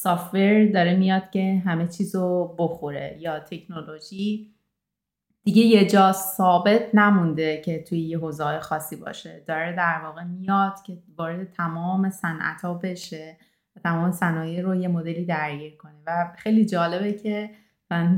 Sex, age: female, 30-49